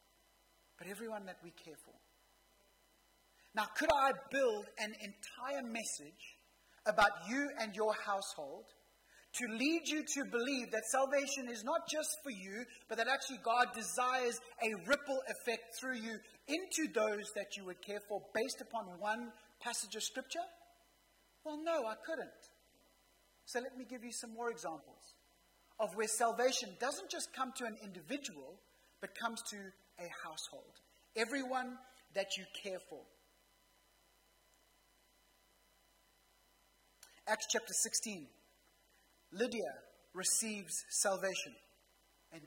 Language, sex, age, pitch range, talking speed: English, male, 30-49, 210-270 Hz, 130 wpm